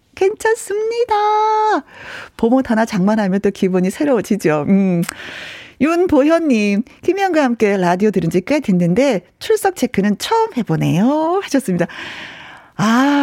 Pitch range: 195-300 Hz